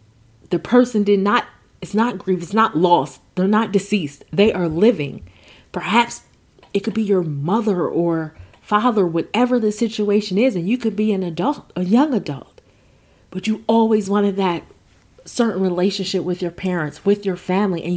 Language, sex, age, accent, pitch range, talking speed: English, female, 30-49, American, 175-210 Hz, 170 wpm